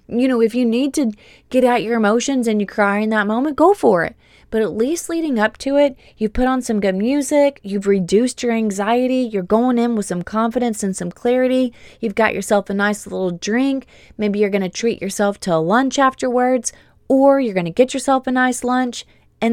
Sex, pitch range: female, 195-250 Hz